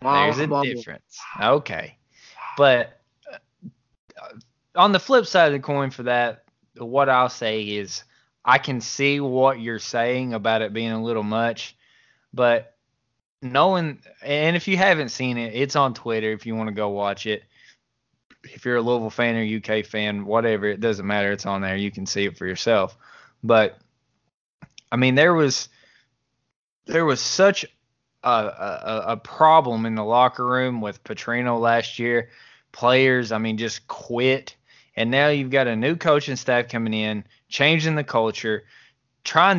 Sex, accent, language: male, American, English